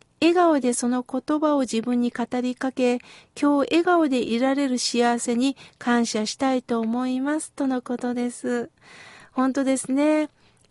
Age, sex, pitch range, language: 50-69, female, 230-290 Hz, Japanese